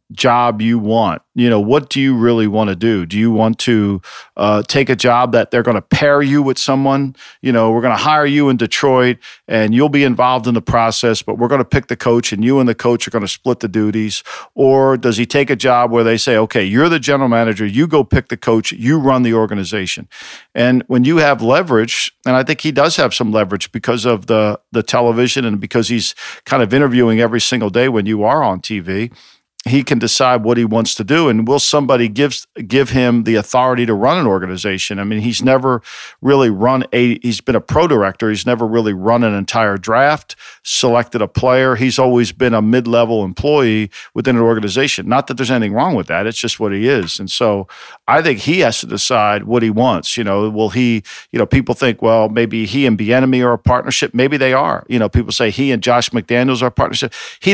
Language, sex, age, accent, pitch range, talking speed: English, male, 50-69, American, 110-130 Hz, 235 wpm